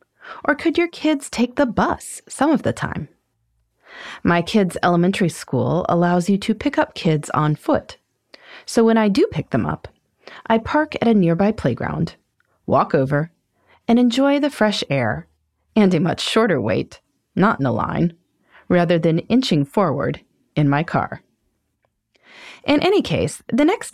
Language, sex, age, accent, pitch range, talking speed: English, female, 30-49, American, 165-255 Hz, 160 wpm